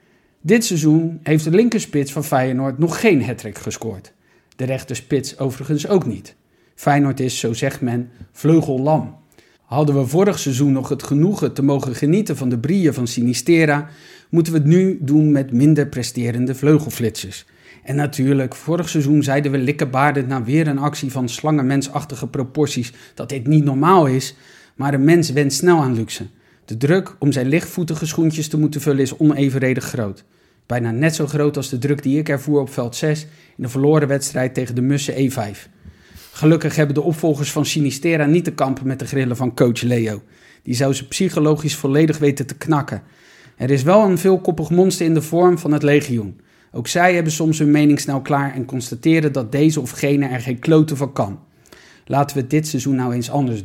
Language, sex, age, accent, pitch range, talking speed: Dutch, male, 50-69, Dutch, 130-155 Hz, 185 wpm